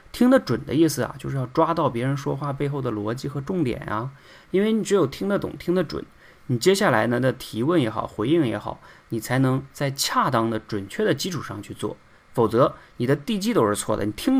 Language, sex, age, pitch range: Chinese, male, 20-39, 110-140 Hz